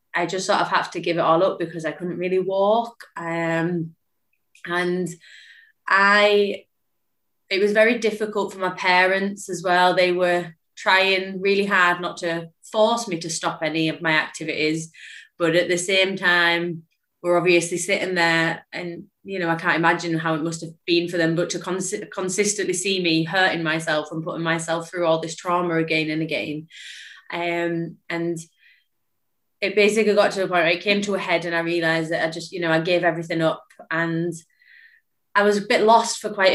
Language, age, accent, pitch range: English, 20-39, British, 165-195 Hz